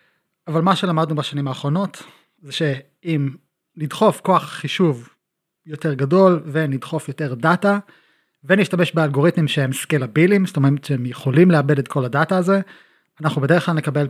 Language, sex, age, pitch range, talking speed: Hebrew, male, 30-49, 140-170 Hz, 135 wpm